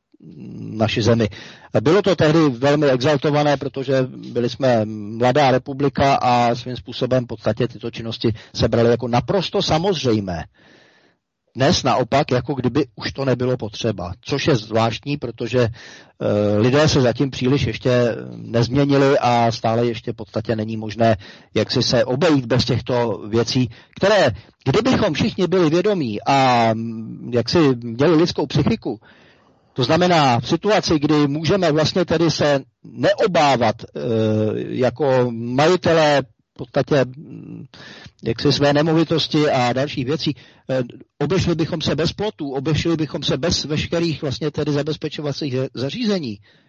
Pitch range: 120-155 Hz